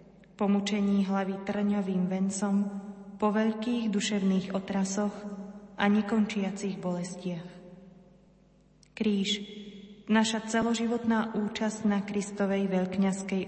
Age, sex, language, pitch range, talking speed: 30-49, female, Slovak, 185-210 Hz, 85 wpm